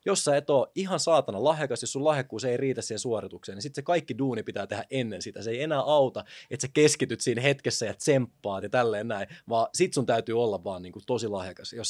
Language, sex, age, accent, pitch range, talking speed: Finnish, male, 20-39, native, 110-130 Hz, 235 wpm